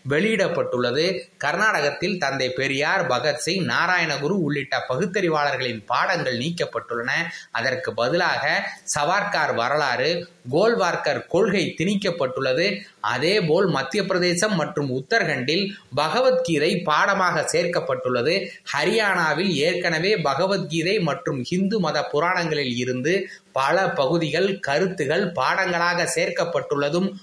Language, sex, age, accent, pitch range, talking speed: Tamil, male, 20-39, native, 140-190 Hz, 85 wpm